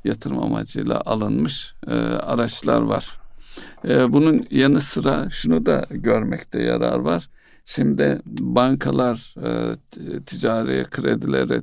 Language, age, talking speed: Turkish, 60-79, 105 wpm